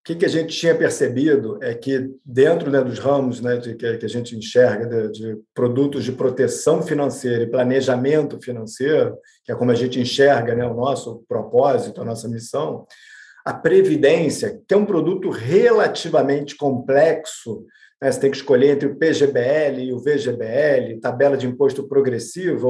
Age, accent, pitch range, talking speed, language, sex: 50-69, Brazilian, 135-180 Hz, 165 wpm, Portuguese, male